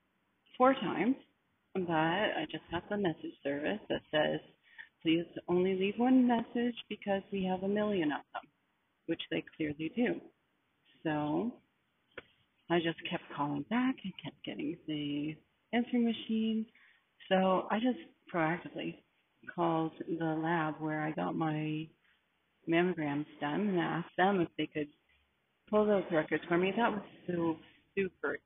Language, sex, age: English, female, 40-59